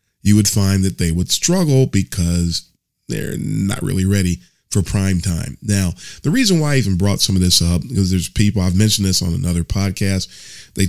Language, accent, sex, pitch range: English, American, male, 90-110 Hz